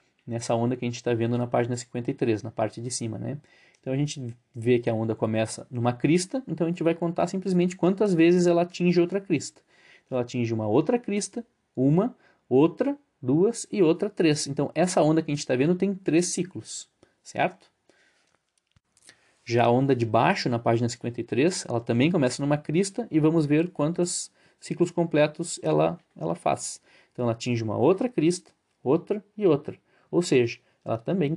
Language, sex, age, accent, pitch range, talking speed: Portuguese, male, 20-39, Brazilian, 120-165 Hz, 185 wpm